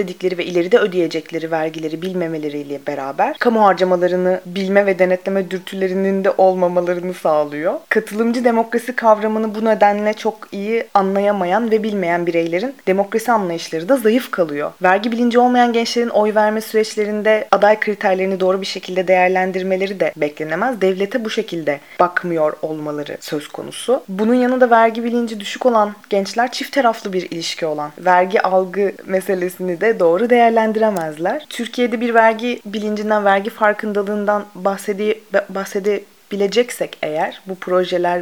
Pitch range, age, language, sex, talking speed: 180-215 Hz, 30-49, Turkish, female, 135 wpm